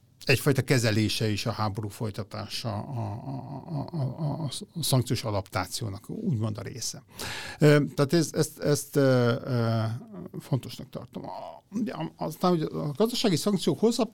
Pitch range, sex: 115-150 Hz, male